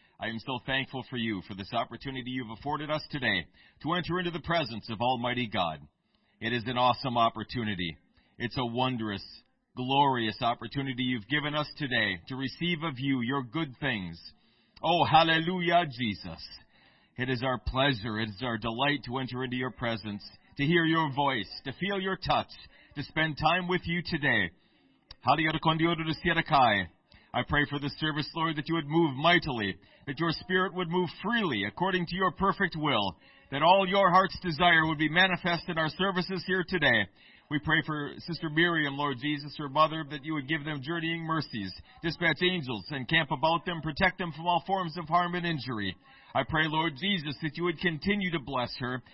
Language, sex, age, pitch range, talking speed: English, male, 40-59, 130-175 Hz, 180 wpm